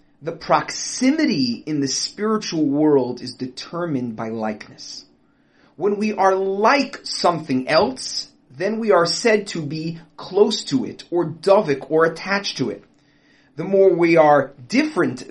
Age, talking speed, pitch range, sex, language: 30-49, 140 wpm, 145-230 Hz, male, English